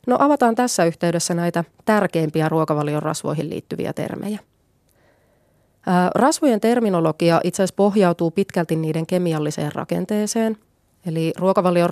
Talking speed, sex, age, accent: 110 wpm, female, 30-49, native